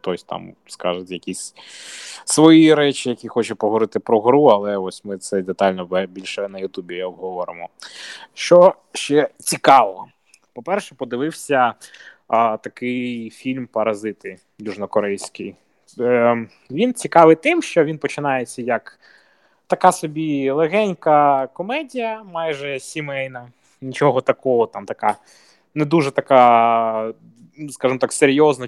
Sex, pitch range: male, 120-175 Hz